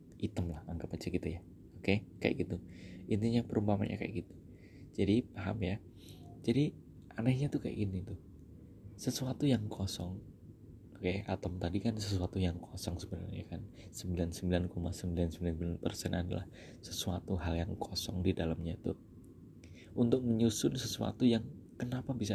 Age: 20-39